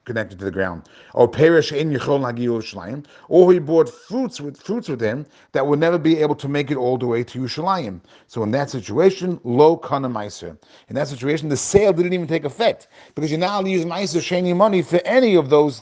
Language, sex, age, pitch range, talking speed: English, male, 40-59, 120-165 Hz, 215 wpm